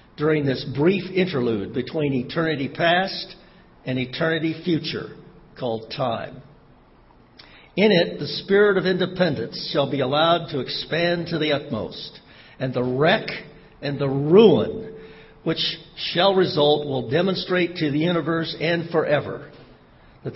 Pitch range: 120-160 Hz